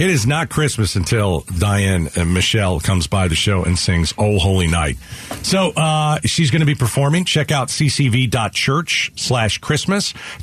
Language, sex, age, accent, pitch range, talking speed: English, male, 50-69, American, 100-145 Hz, 175 wpm